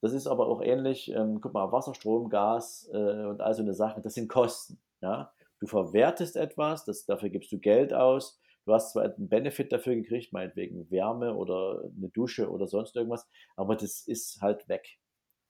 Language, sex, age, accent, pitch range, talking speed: German, male, 50-69, German, 105-155 Hz, 185 wpm